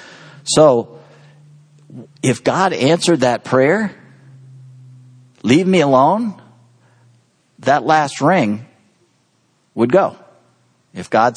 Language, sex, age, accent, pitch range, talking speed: English, male, 50-69, American, 105-135 Hz, 85 wpm